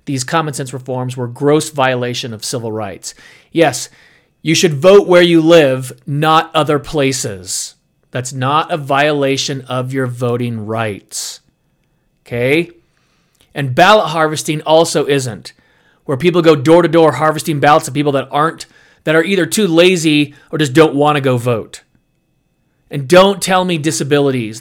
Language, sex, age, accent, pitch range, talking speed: English, male, 40-59, American, 135-185 Hz, 150 wpm